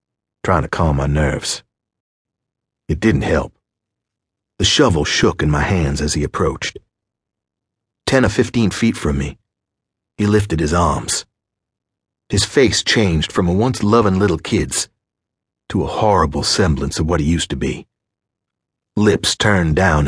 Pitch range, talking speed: 80-110 Hz, 145 wpm